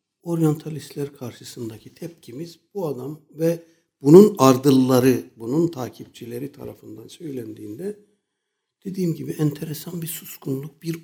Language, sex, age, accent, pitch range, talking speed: Turkish, male, 60-79, native, 115-170 Hz, 100 wpm